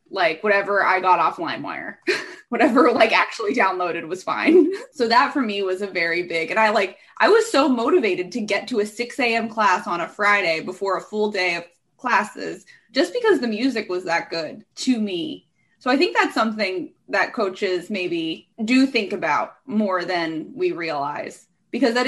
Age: 20-39